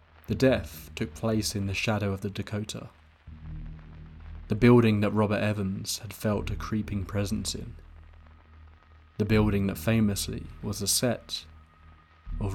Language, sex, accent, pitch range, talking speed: English, male, British, 80-115 Hz, 140 wpm